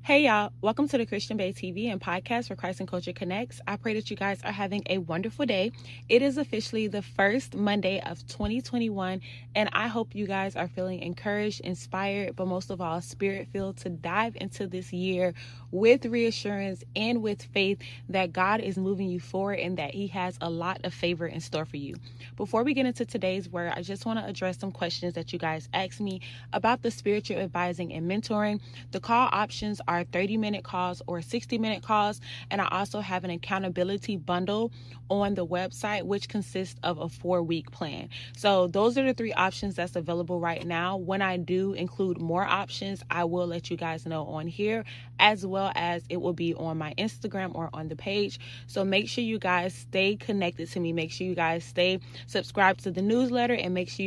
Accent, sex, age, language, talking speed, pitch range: American, female, 20-39, English, 205 wpm, 170-205 Hz